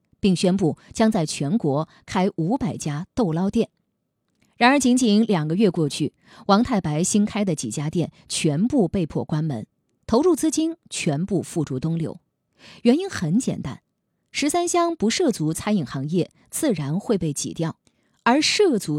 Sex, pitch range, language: female, 160-220 Hz, Chinese